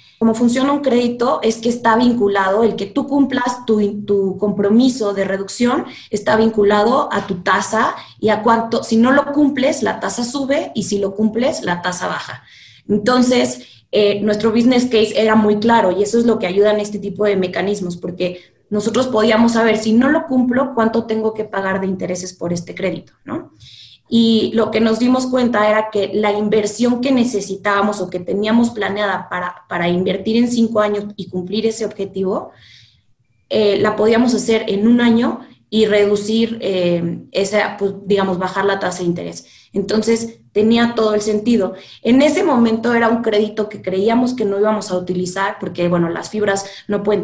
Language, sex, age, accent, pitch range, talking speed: Spanish, female, 20-39, Mexican, 190-230 Hz, 185 wpm